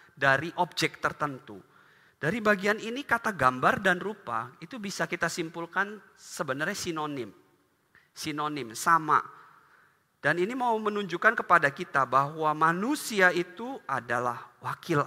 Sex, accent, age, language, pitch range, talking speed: male, native, 40-59, Indonesian, 140-195 Hz, 115 wpm